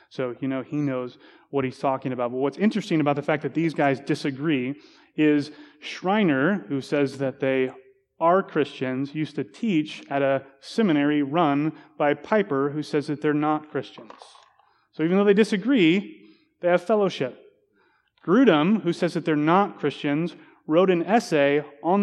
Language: English